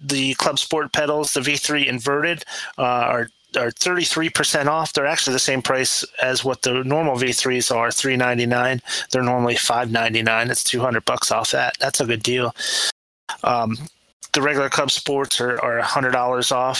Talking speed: 195 wpm